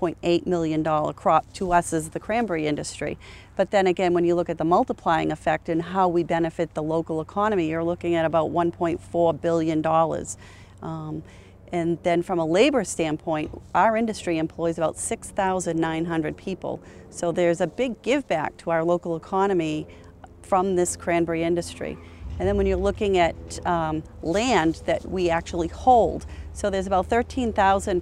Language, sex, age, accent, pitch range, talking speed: English, female, 40-59, American, 165-195 Hz, 160 wpm